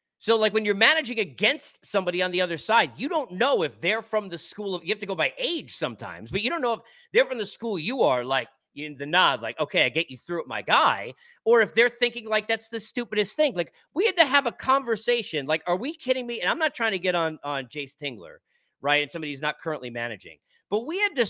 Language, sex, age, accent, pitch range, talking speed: English, male, 40-59, American, 190-300 Hz, 260 wpm